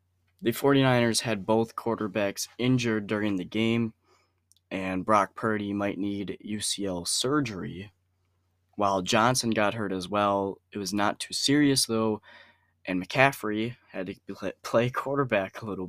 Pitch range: 95-120 Hz